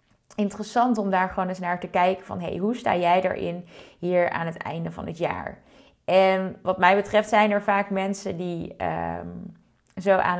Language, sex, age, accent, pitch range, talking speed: Dutch, female, 20-39, Dutch, 175-215 Hz, 180 wpm